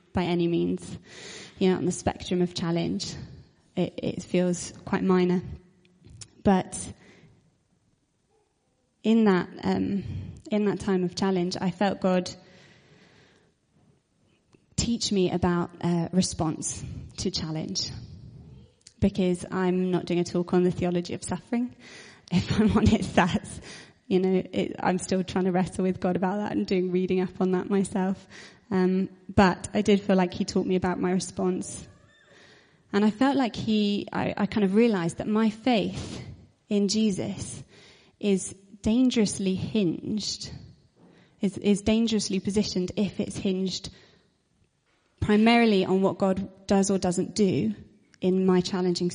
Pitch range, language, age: 180-200 Hz, English, 20-39